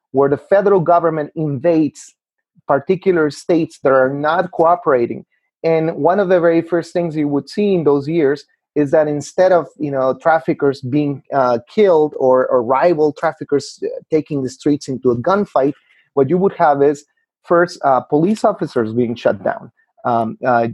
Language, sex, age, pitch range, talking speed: English, male, 30-49, 130-165 Hz, 170 wpm